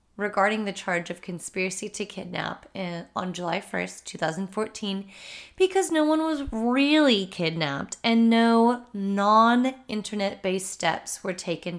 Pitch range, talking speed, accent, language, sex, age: 175-220 Hz, 115 wpm, American, English, female, 20-39